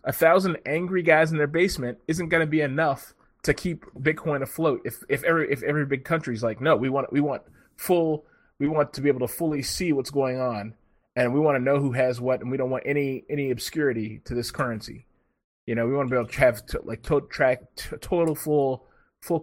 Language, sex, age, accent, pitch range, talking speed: English, male, 30-49, American, 125-155 Hz, 235 wpm